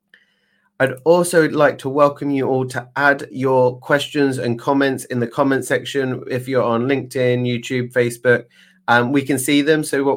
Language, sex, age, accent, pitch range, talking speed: English, male, 30-49, British, 115-135 Hz, 175 wpm